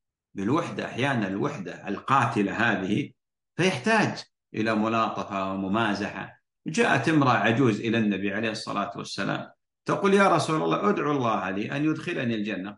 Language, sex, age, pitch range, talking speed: Arabic, male, 50-69, 110-140 Hz, 125 wpm